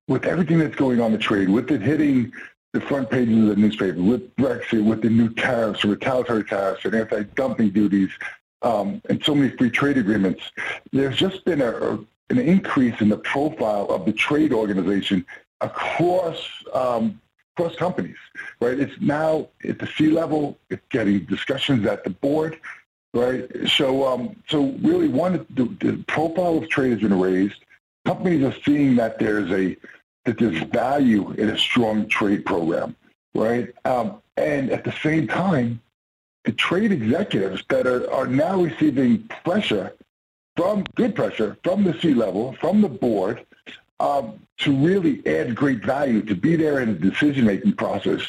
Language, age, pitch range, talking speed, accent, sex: English, 50-69, 110-165 Hz, 170 wpm, American, male